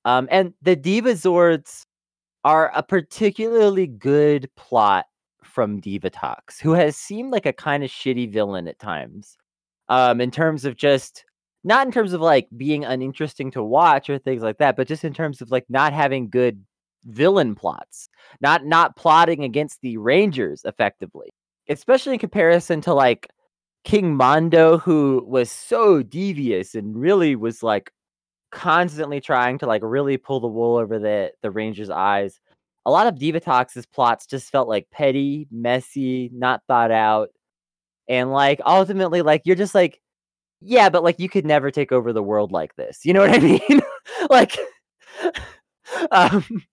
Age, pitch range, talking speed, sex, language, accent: 30-49, 120-185 Hz, 165 wpm, male, English, American